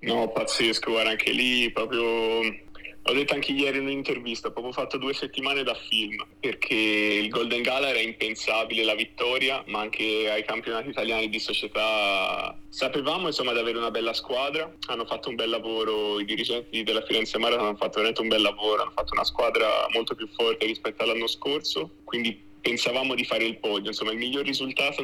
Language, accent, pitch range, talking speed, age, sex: Italian, native, 105-125 Hz, 180 wpm, 20-39, male